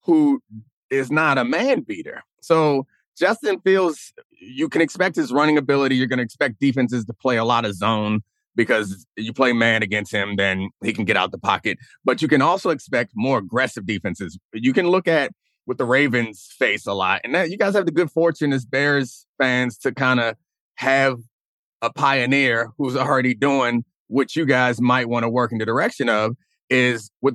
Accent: American